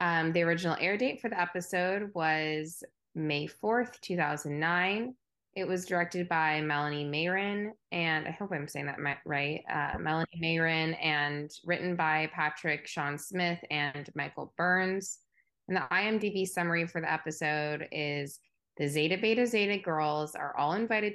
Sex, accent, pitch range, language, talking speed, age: female, American, 150-185 Hz, English, 150 wpm, 20-39